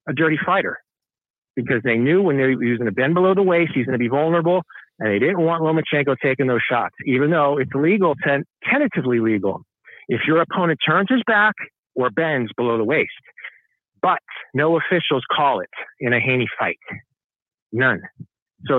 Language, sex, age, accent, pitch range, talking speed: English, male, 50-69, American, 125-175 Hz, 180 wpm